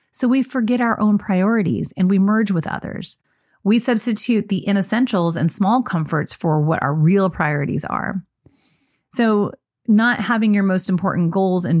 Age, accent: 30-49, American